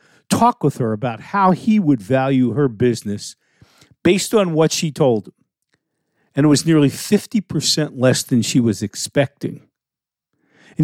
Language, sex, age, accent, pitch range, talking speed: English, male, 50-69, American, 125-165 Hz, 150 wpm